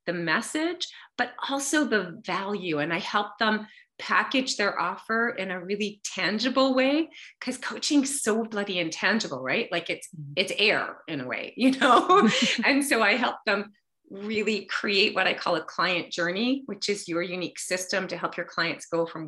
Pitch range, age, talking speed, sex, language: 175-245 Hz, 30-49, 175 wpm, female, English